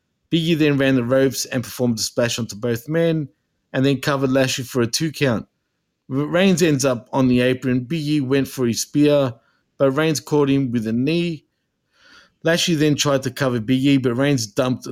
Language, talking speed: English, 185 wpm